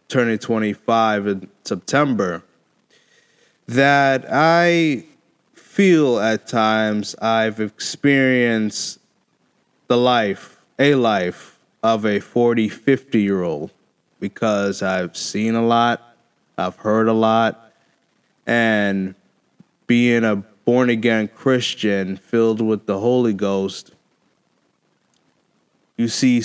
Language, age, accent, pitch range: English, 20-39, American, 110-130 Hz